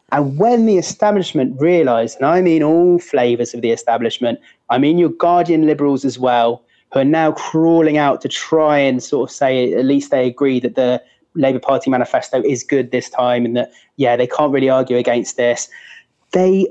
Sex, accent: male, British